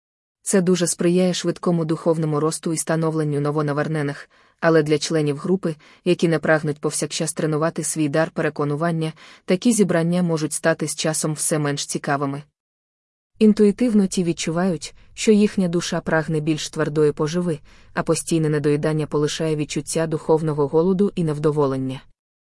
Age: 20-39